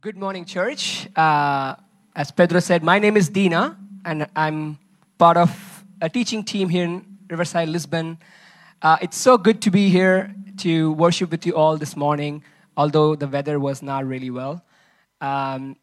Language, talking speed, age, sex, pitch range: English, 165 wpm, 20-39, male, 155-195 Hz